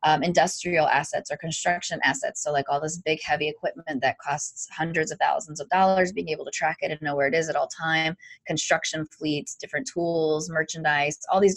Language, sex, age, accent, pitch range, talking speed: English, female, 20-39, American, 150-180 Hz, 205 wpm